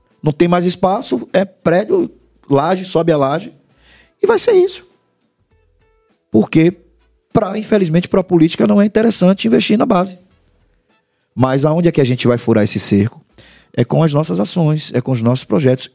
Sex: male